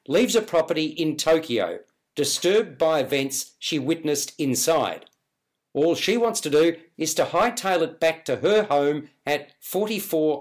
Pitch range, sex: 145-180 Hz, male